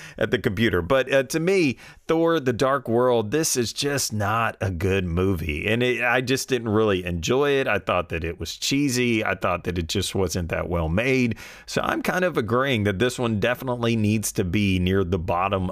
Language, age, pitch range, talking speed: English, 30-49, 100-140 Hz, 210 wpm